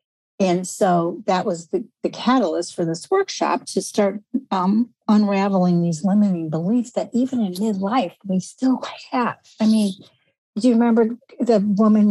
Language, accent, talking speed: English, American, 155 wpm